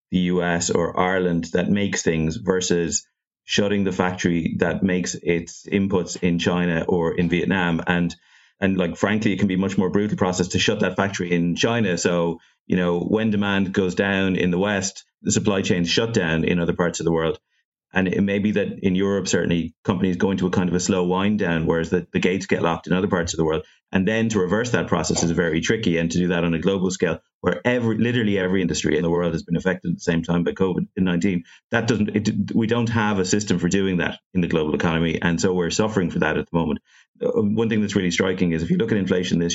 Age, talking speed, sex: 30-49, 240 wpm, male